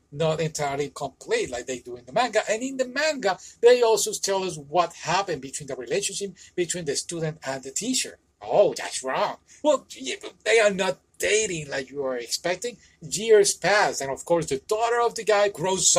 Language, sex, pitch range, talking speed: English, male, 135-215 Hz, 195 wpm